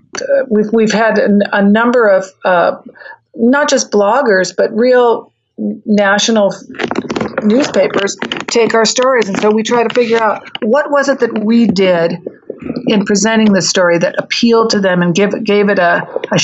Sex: female